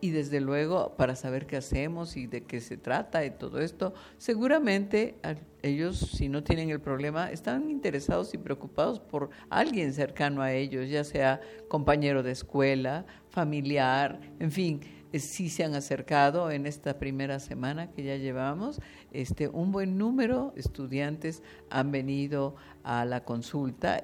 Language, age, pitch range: Spanish, 50-69, 135-165 Hz